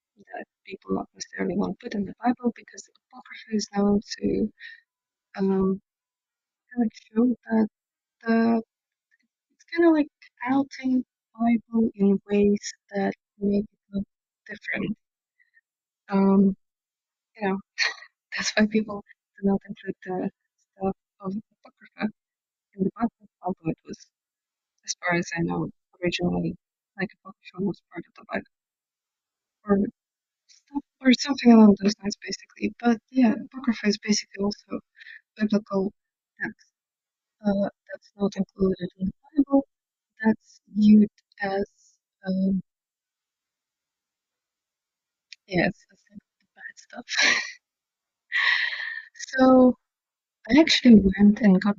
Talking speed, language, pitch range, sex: 125 wpm, English, 195-255 Hz, female